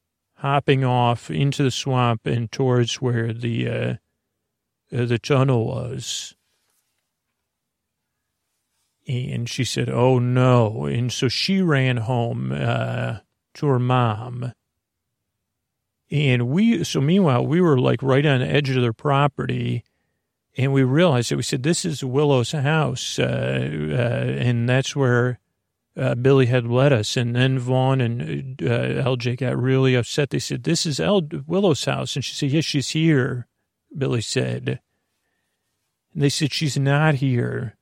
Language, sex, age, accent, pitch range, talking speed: English, male, 40-59, American, 120-140 Hz, 145 wpm